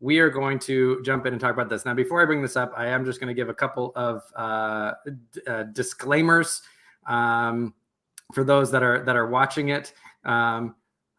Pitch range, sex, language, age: 120-145 Hz, male, English, 20-39